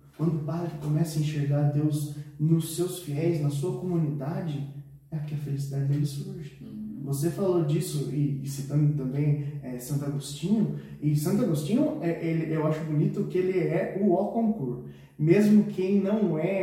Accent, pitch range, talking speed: Brazilian, 140-170 Hz, 165 wpm